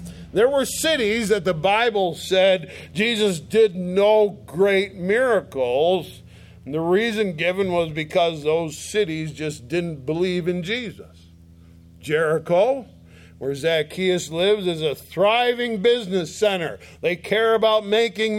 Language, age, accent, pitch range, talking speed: English, 50-69, American, 125-205 Hz, 125 wpm